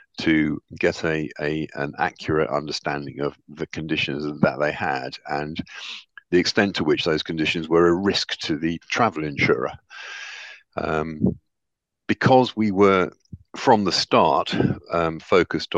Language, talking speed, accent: English, 135 wpm, British